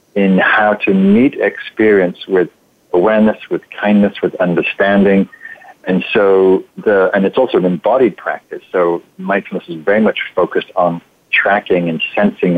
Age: 50-69